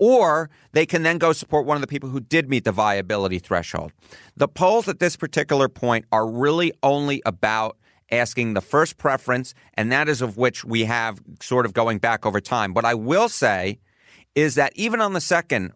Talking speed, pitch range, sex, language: 200 wpm, 115-150 Hz, male, English